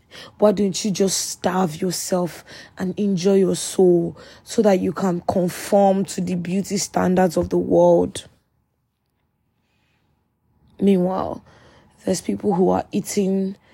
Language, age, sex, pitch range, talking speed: English, 20-39, female, 175-205 Hz, 120 wpm